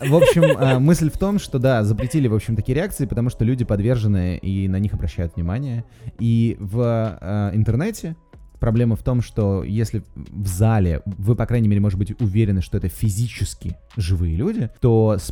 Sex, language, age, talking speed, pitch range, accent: male, Russian, 20-39, 175 wpm, 90-115 Hz, native